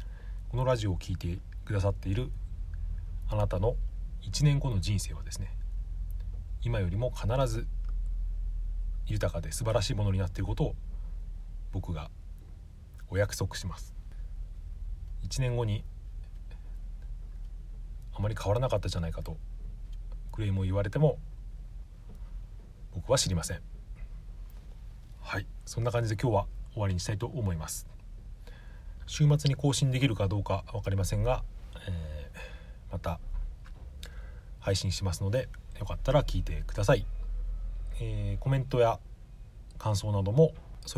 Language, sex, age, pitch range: Japanese, male, 40-59, 80-105 Hz